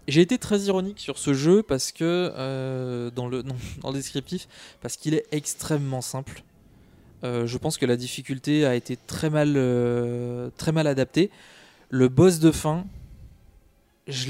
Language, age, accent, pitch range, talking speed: French, 20-39, French, 125-160 Hz, 170 wpm